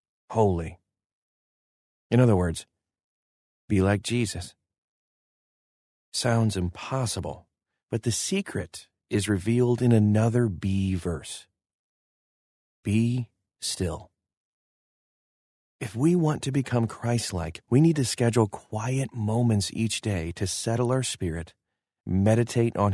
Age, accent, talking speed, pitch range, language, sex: 40-59, American, 105 wpm, 90-120 Hz, English, male